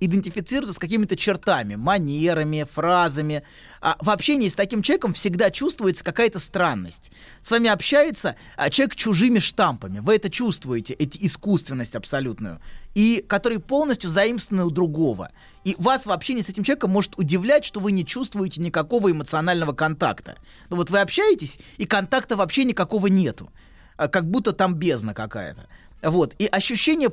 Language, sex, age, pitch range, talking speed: Russian, male, 30-49, 155-220 Hz, 145 wpm